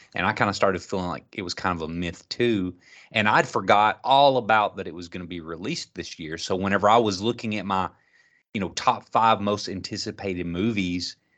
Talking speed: 220 wpm